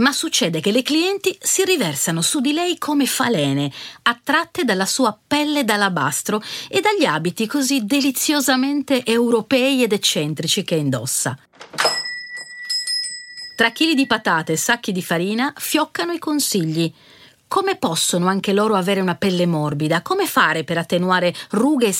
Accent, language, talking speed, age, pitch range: native, Italian, 140 wpm, 40-59, 170-270 Hz